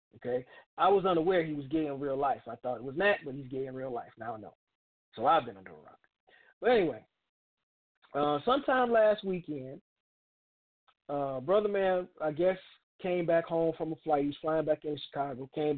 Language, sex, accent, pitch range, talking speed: English, male, American, 155-200 Hz, 205 wpm